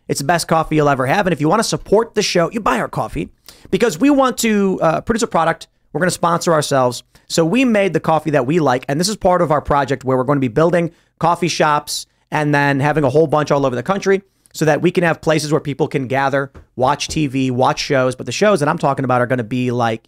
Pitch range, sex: 145-190 Hz, male